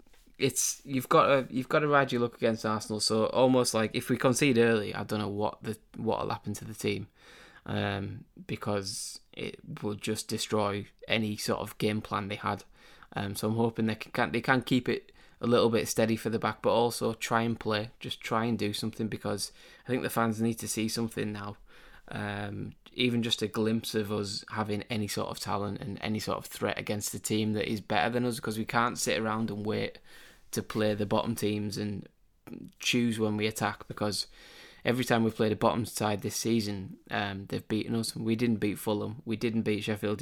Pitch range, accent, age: 105-115 Hz, British, 20-39